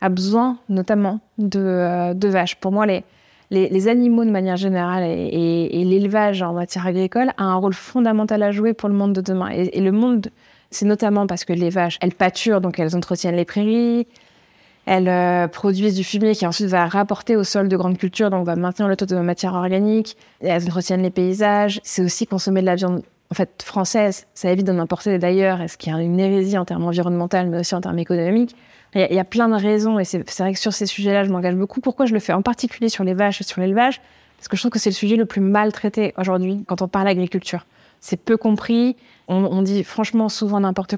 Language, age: French, 20-39